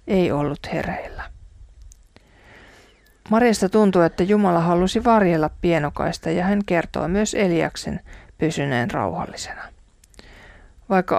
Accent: native